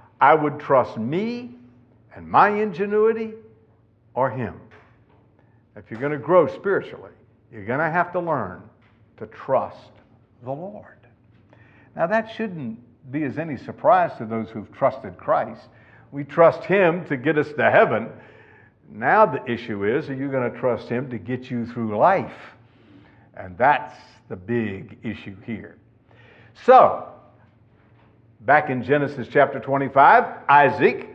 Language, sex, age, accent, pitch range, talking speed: English, male, 60-79, American, 110-150 Hz, 140 wpm